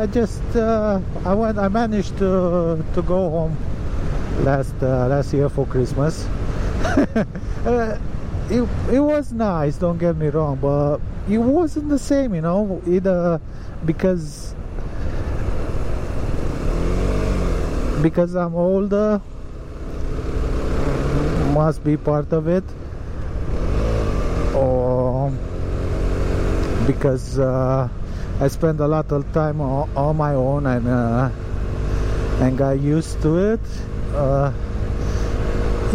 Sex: male